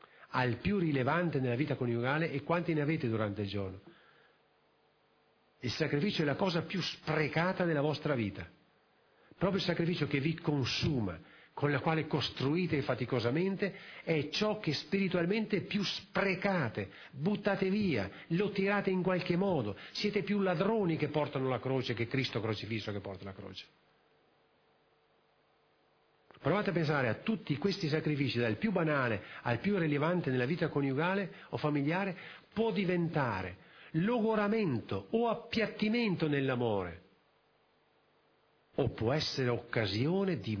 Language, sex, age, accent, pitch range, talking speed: Italian, male, 50-69, native, 120-185 Hz, 135 wpm